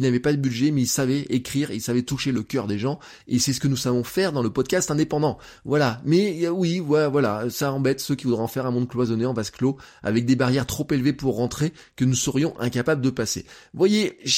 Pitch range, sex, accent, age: 130-170 Hz, male, French, 20-39